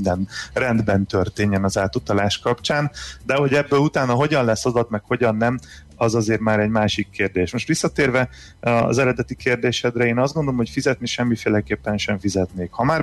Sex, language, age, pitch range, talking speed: male, Hungarian, 30-49, 100-120 Hz, 175 wpm